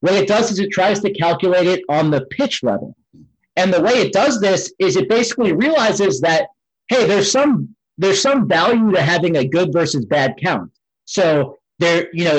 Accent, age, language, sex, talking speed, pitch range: American, 40-59, English, male, 200 wpm, 140-190 Hz